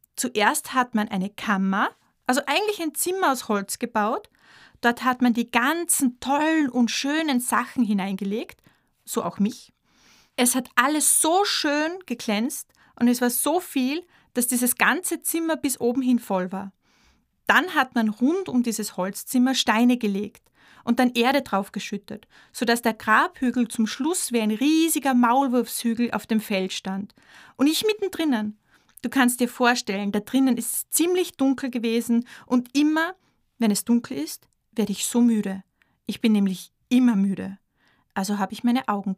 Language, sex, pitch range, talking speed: German, female, 215-270 Hz, 160 wpm